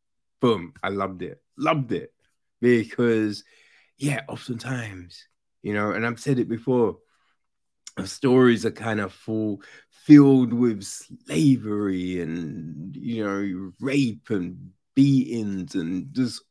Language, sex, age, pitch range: English, male, 20-39, 105-130 Hz